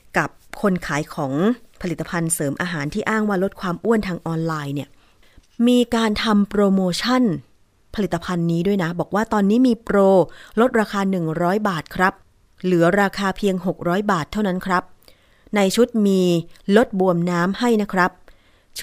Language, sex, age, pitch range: Thai, female, 30-49, 165-210 Hz